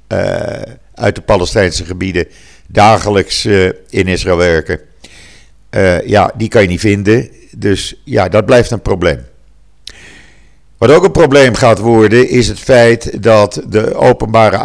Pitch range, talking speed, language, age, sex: 85-110 Hz, 130 wpm, Dutch, 50-69, male